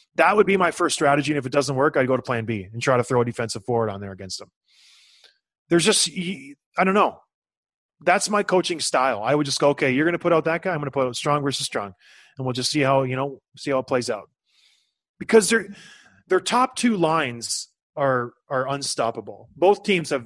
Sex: male